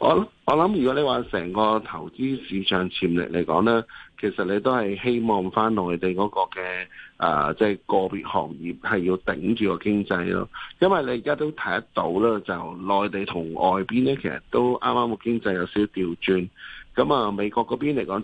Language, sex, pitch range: Chinese, male, 95-115 Hz